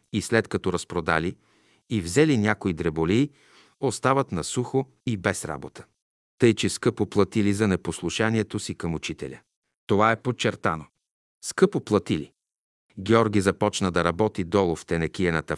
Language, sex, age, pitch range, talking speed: Bulgarian, male, 50-69, 95-120 Hz, 135 wpm